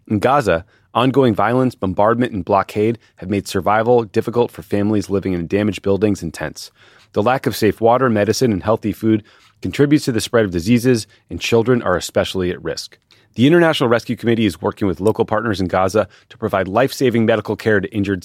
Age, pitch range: 30-49, 95-115 Hz